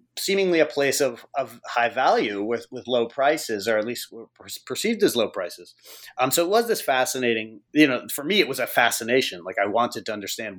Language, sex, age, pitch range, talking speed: English, male, 30-49, 120-160 Hz, 210 wpm